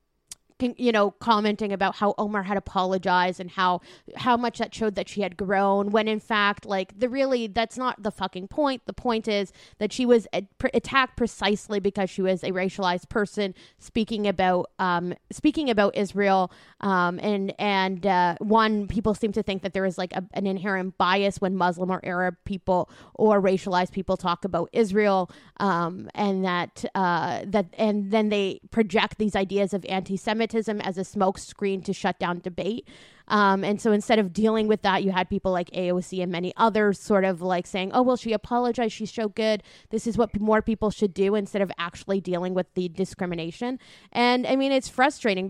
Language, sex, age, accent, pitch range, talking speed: English, female, 20-39, American, 185-220 Hz, 185 wpm